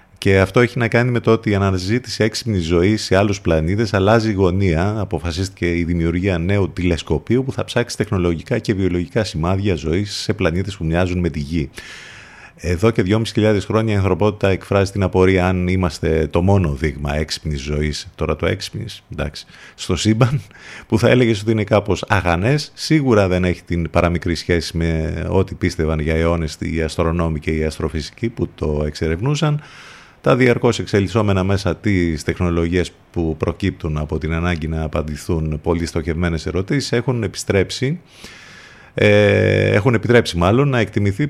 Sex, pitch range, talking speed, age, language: male, 85-110 Hz, 160 wpm, 30-49, Greek